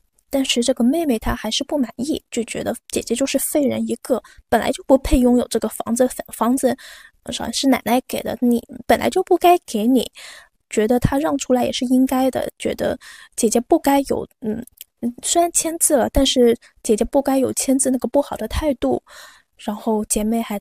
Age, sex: 10-29, female